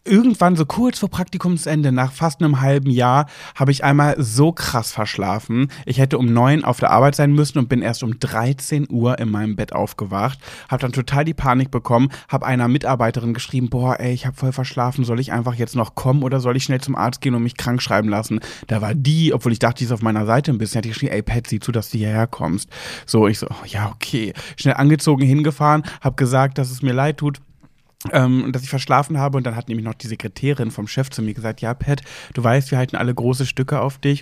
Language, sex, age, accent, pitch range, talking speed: German, male, 30-49, German, 120-140 Hz, 240 wpm